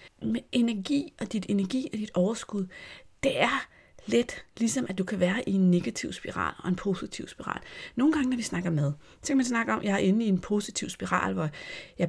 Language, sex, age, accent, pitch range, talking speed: Danish, female, 30-49, native, 160-195 Hz, 225 wpm